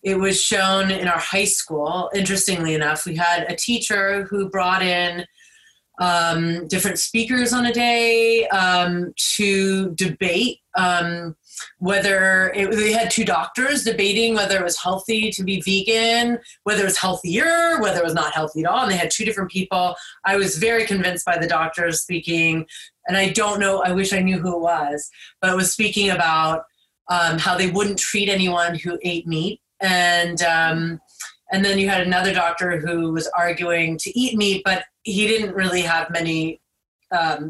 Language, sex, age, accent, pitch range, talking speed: English, female, 30-49, American, 170-210 Hz, 175 wpm